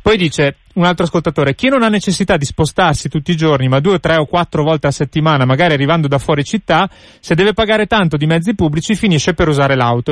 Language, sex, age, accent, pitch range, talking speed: Italian, male, 30-49, native, 145-185 Hz, 225 wpm